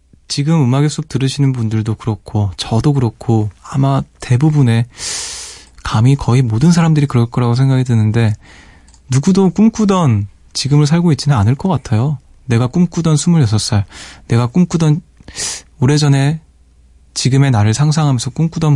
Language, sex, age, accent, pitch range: Korean, male, 20-39, native, 105-145 Hz